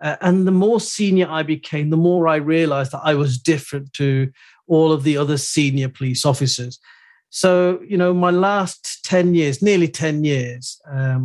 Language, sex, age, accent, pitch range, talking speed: English, male, 40-59, British, 135-175 Hz, 180 wpm